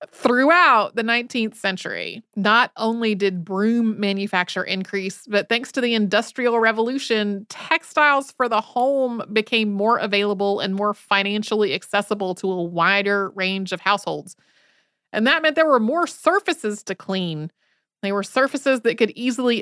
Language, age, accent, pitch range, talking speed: English, 30-49, American, 195-240 Hz, 145 wpm